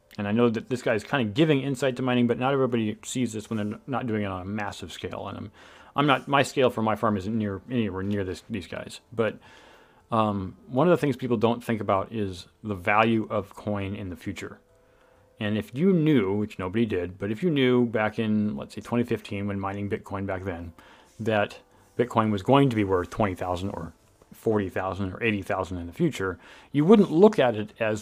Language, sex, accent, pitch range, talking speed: English, male, American, 100-125 Hz, 225 wpm